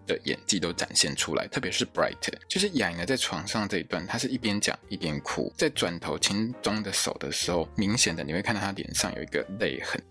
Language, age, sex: Chinese, 20-39, male